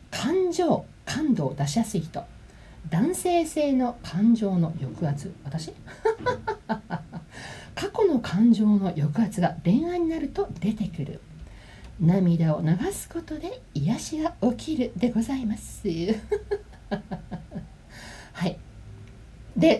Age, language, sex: 40-59, Japanese, female